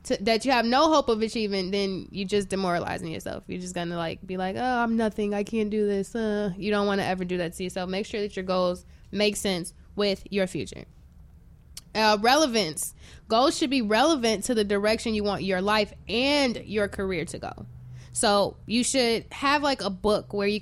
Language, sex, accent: English, female, American